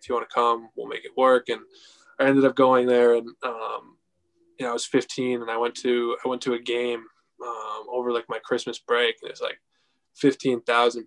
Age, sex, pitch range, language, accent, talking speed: 10-29, male, 115-140 Hz, English, American, 230 wpm